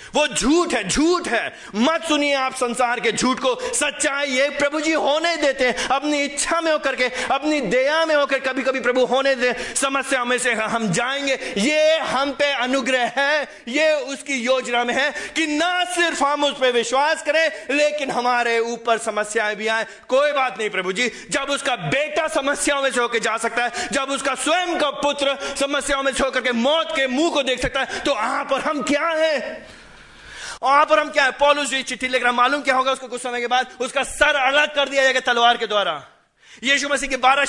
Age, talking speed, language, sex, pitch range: 30-49, 200 wpm, Hindi, male, 250-295 Hz